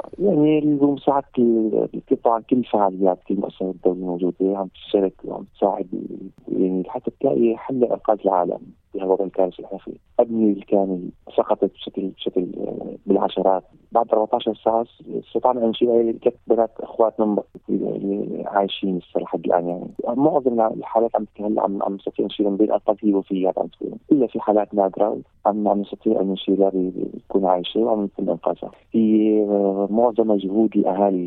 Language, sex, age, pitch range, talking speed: Arabic, male, 30-49, 95-115 Hz, 145 wpm